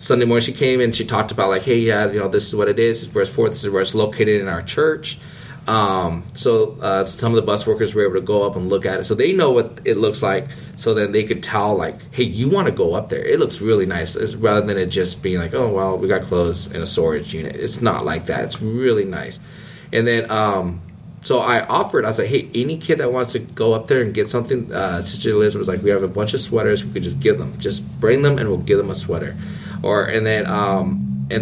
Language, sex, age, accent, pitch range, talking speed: English, male, 20-39, American, 95-115 Hz, 275 wpm